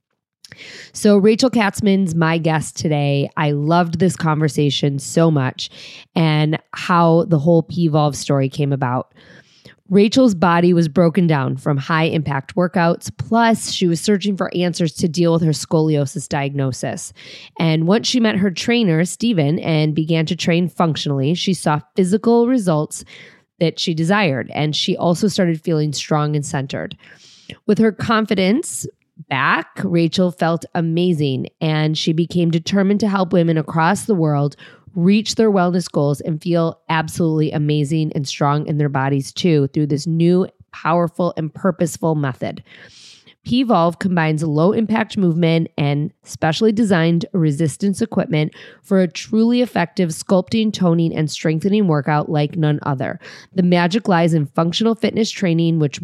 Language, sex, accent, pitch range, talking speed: English, female, American, 155-190 Hz, 145 wpm